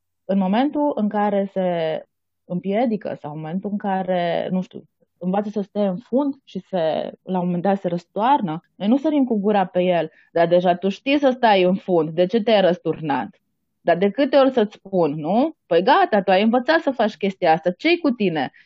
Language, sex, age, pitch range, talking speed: Romanian, female, 20-39, 180-230 Hz, 205 wpm